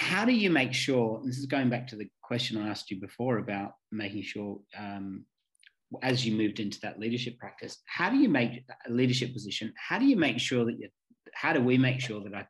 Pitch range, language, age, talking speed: 100-120 Hz, English, 30-49, 235 wpm